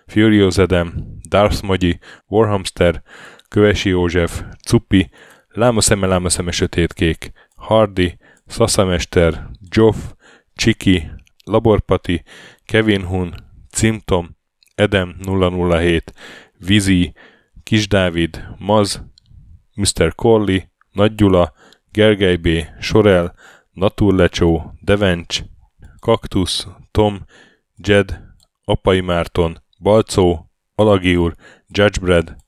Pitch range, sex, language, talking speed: 85-105 Hz, male, Hungarian, 80 wpm